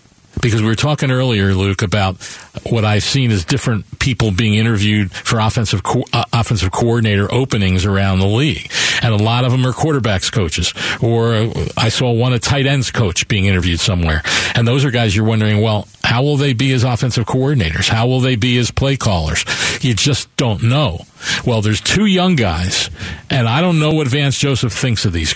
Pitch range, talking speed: 100-130 Hz, 195 wpm